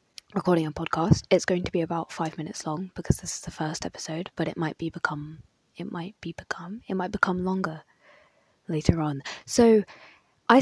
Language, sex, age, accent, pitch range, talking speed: English, female, 20-39, British, 155-180 Hz, 190 wpm